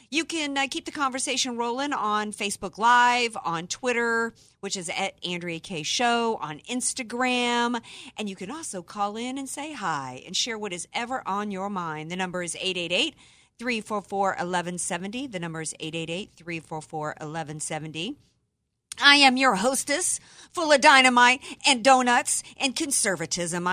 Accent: American